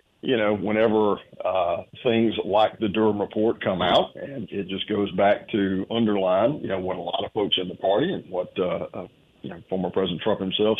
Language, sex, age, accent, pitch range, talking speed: English, male, 50-69, American, 100-120 Hz, 210 wpm